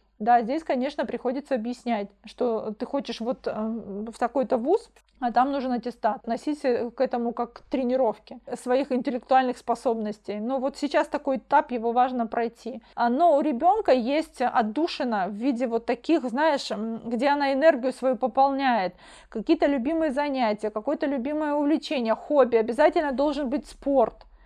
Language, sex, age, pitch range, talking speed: Russian, female, 30-49, 240-285 Hz, 140 wpm